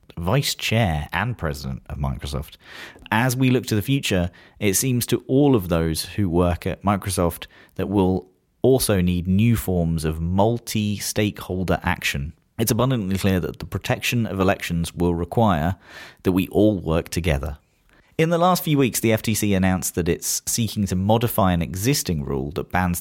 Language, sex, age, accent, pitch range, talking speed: English, male, 30-49, British, 85-115 Hz, 170 wpm